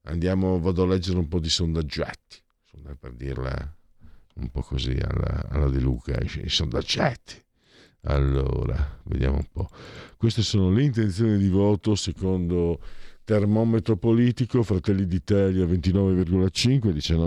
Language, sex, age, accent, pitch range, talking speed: Italian, male, 50-69, native, 80-110 Hz, 120 wpm